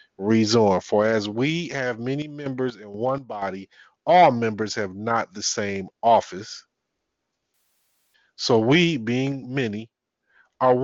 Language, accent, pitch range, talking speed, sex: English, American, 115-145 Hz, 120 wpm, male